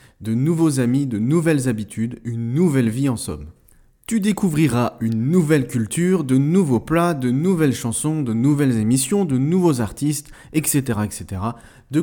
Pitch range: 120-185 Hz